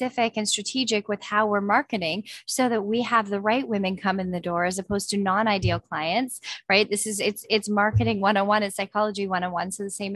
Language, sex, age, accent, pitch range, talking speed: English, female, 10-29, American, 185-220 Hz, 215 wpm